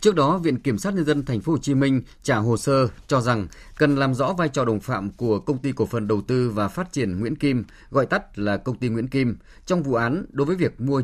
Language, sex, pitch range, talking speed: Vietnamese, male, 110-145 Hz, 270 wpm